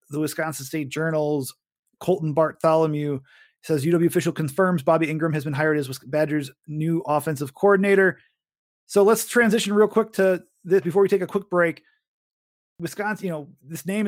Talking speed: 160 wpm